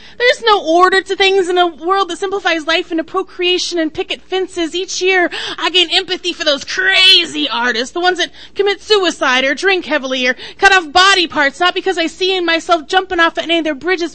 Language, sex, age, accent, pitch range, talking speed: English, female, 30-49, American, 315-390 Hz, 210 wpm